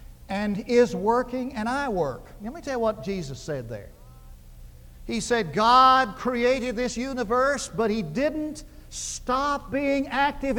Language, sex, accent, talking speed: English, male, American, 145 wpm